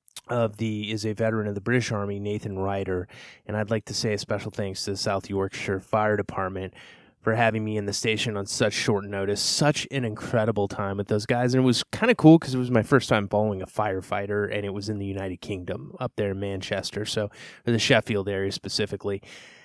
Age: 20-39